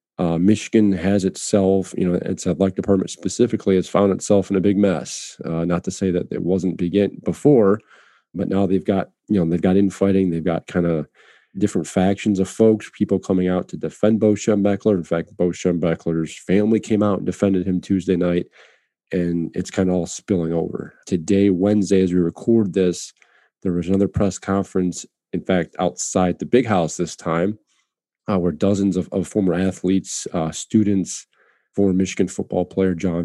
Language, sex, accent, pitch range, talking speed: English, male, American, 90-100 Hz, 185 wpm